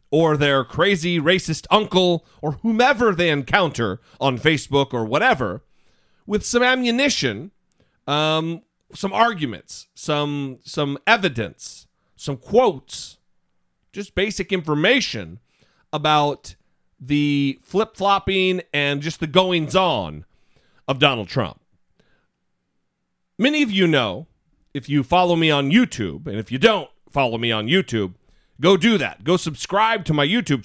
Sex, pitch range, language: male, 135-190 Hz, English